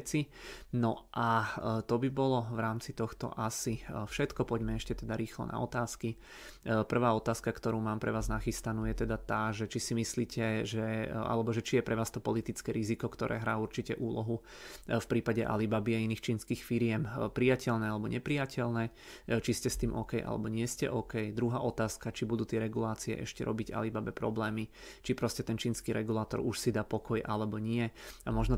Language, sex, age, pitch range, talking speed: Czech, male, 30-49, 110-120 Hz, 180 wpm